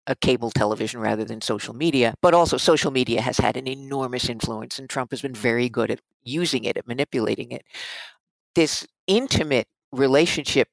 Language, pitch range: English, 115-155 Hz